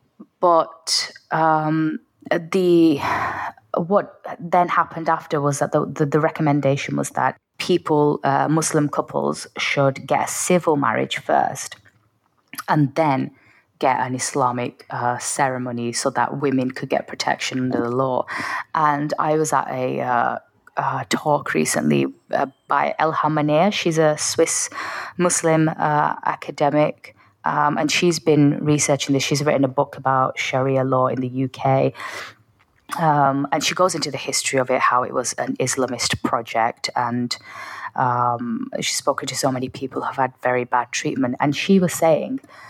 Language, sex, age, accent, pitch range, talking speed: English, female, 20-39, British, 130-160 Hz, 150 wpm